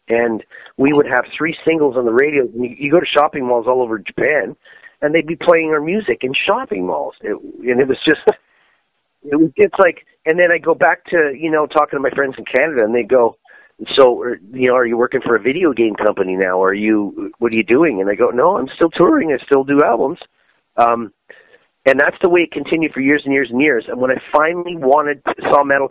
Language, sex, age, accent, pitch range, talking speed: English, male, 40-59, American, 120-170 Hz, 235 wpm